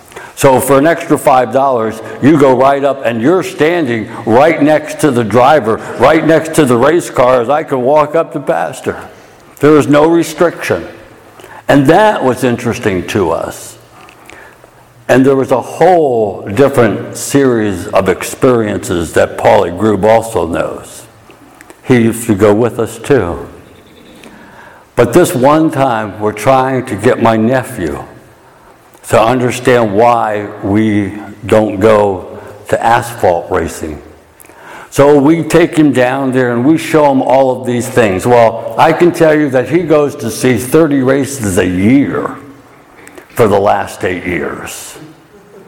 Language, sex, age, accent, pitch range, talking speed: English, male, 60-79, American, 110-145 Hz, 150 wpm